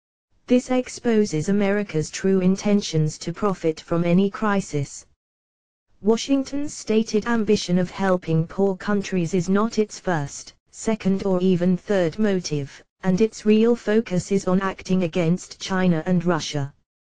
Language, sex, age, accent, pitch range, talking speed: English, female, 30-49, British, 170-210 Hz, 130 wpm